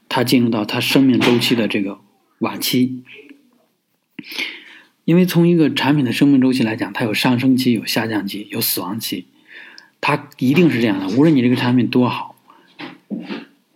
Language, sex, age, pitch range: Chinese, male, 20-39, 115-145 Hz